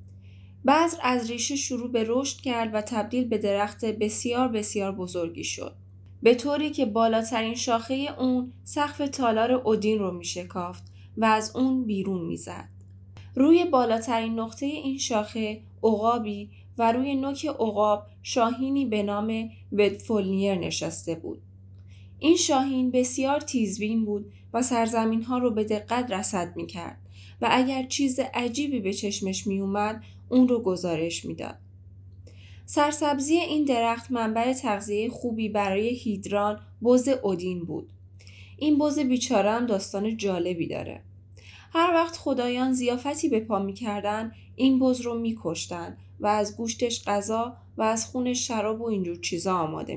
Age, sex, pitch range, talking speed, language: 10-29, female, 175-250 Hz, 135 wpm, Persian